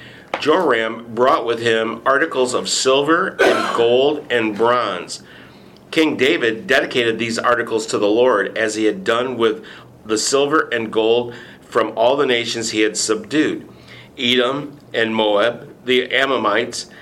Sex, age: male, 50-69